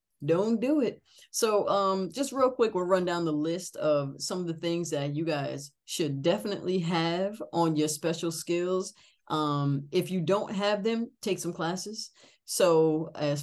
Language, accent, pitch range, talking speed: English, American, 150-190 Hz, 175 wpm